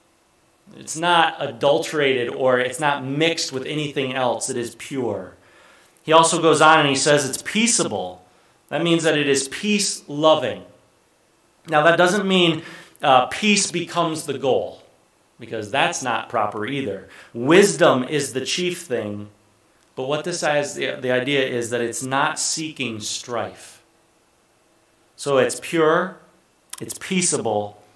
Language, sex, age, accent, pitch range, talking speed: English, male, 30-49, American, 120-155 Hz, 140 wpm